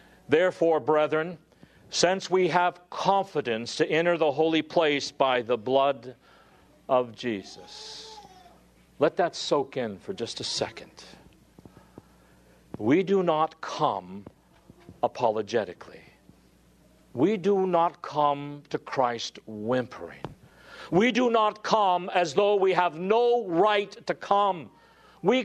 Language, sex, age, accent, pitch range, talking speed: English, male, 50-69, American, 160-220 Hz, 115 wpm